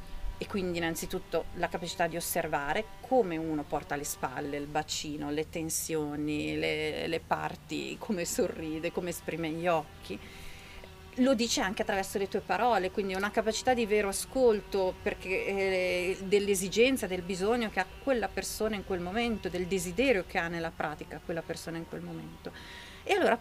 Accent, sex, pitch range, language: native, female, 165-225 Hz, Italian